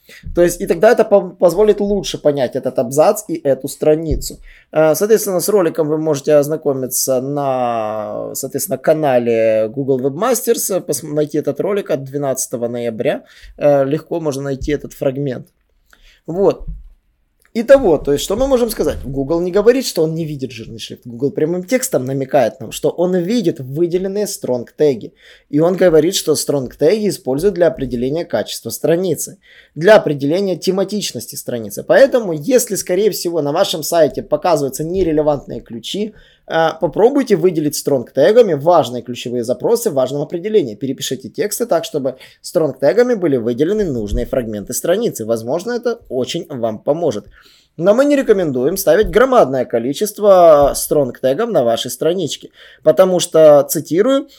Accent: native